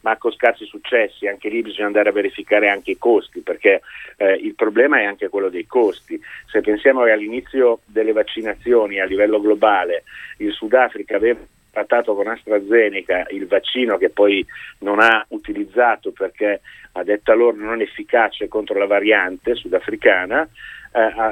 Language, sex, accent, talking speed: Italian, male, native, 160 wpm